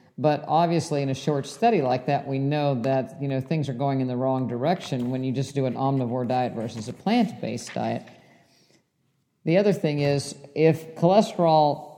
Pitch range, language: 135-160 Hz, English